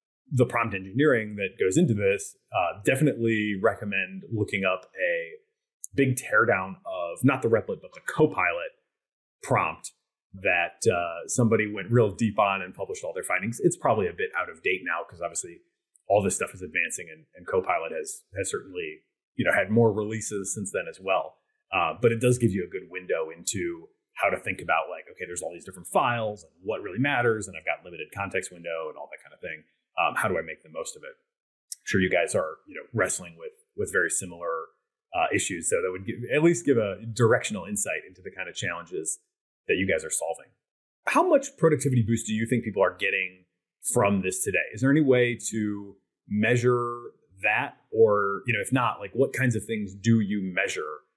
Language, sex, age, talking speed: English, male, 30-49, 210 wpm